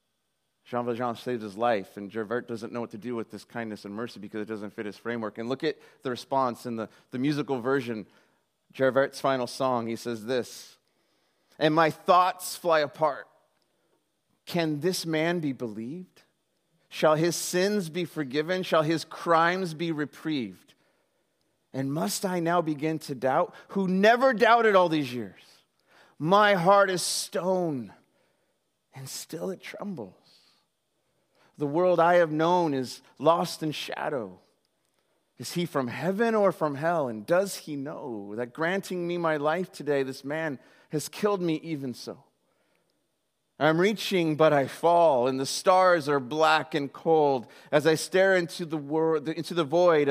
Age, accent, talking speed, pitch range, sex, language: 30-49, American, 160 wpm, 125-170 Hz, male, English